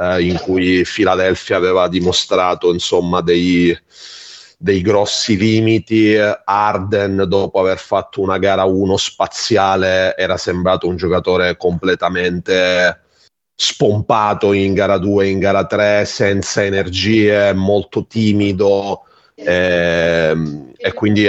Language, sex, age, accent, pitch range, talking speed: Italian, male, 30-49, native, 90-100 Hz, 105 wpm